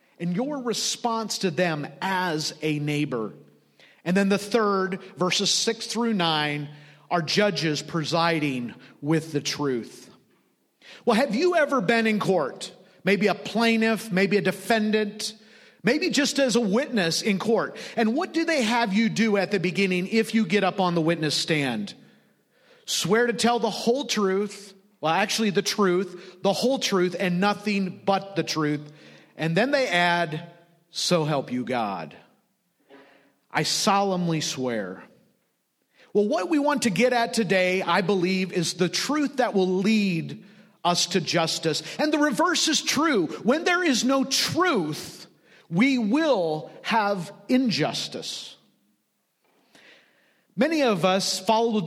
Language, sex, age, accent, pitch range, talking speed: English, male, 40-59, American, 170-230 Hz, 145 wpm